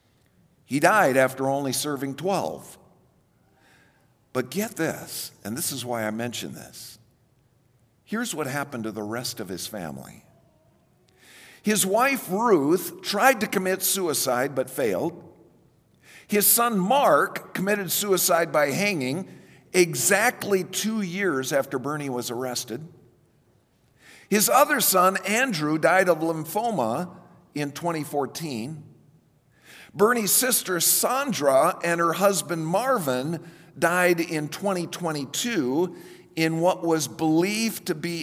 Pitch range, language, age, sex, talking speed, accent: 135-190 Hz, English, 50-69, male, 115 wpm, American